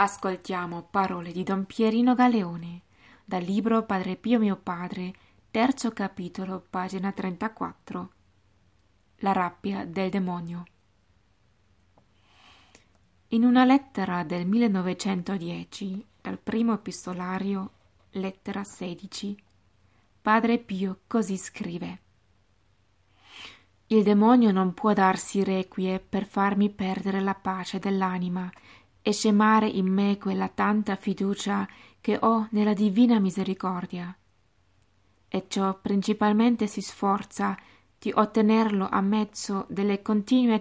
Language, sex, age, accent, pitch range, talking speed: Italian, female, 20-39, native, 180-210 Hz, 100 wpm